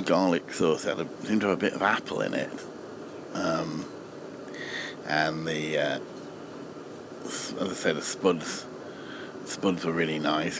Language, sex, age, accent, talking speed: English, male, 50-69, British, 145 wpm